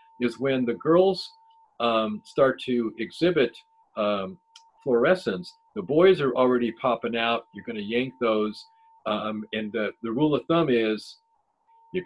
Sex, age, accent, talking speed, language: male, 50-69, American, 145 wpm, English